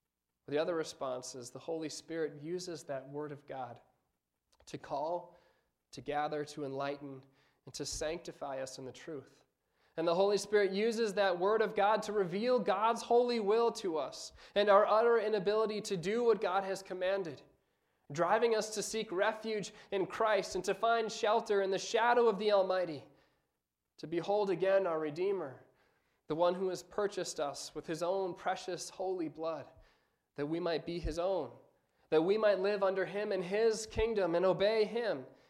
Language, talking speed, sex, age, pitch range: English, 175 wpm, male, 20-39, 155-215 Hz